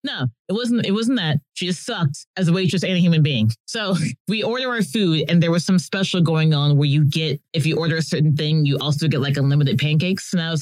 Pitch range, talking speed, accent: 145-190 Hz, 260 wpm, American